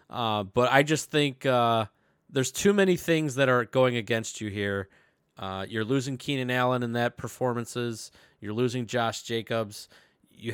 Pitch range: 110-140 Hz